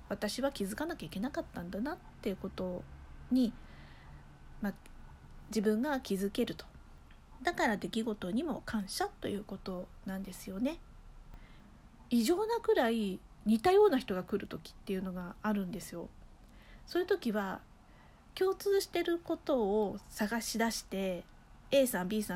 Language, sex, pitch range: Japanese, female, 195-270 Hz